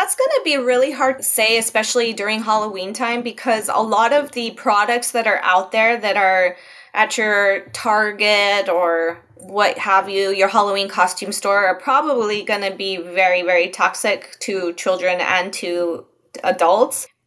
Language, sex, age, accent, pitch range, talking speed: English, female, 20-39, American, 195-250 Hz, 165 wpm